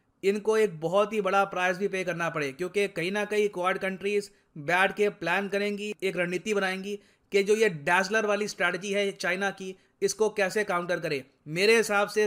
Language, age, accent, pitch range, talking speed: Hindi, 30-49, native, 185-205 Hz, 190 wpm